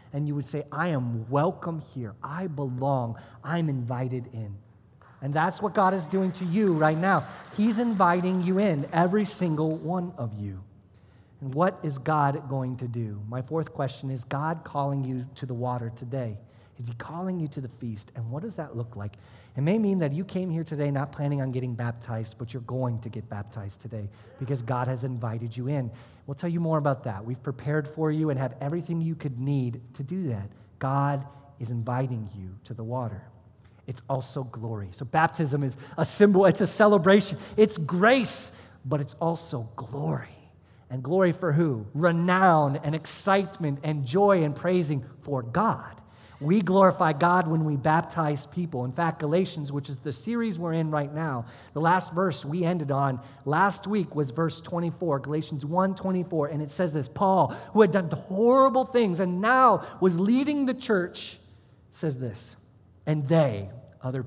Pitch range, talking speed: 125-170 Hz, 185 wpm